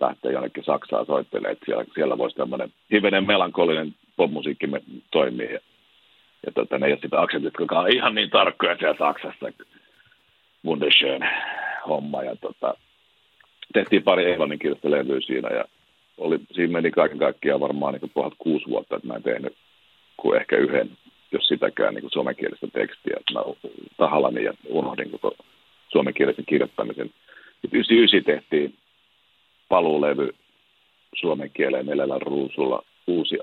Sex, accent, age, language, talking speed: male, native, 50-69, Finnish, 125 wpm